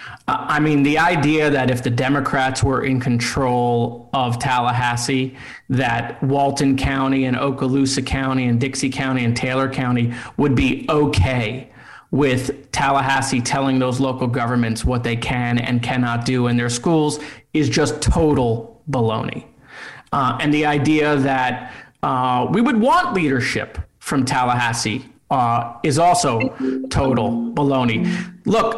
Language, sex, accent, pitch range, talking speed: English, male, American, 125-165 Hz, 135 wpm